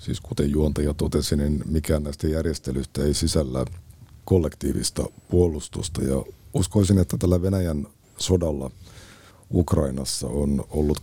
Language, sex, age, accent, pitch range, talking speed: Finnish, male, 50-69, native, 75-95 Hz, 115 wpm